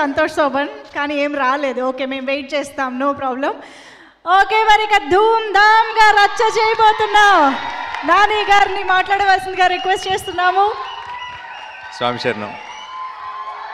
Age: 20-39